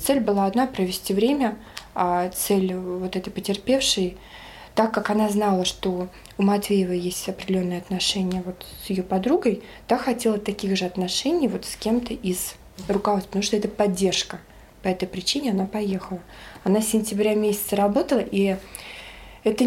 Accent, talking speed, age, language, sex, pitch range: native, 155 wpm, 20-39, Russian, female, 190-225 Hz